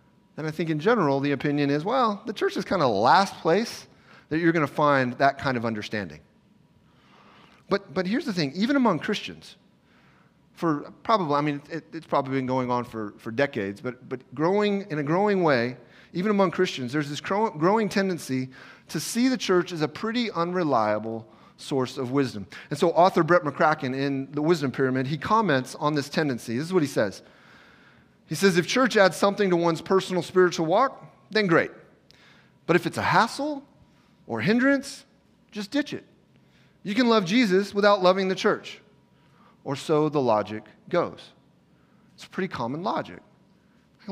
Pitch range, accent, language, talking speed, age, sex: 130-195 Hz, American, English, 180 wpm, 30-49, male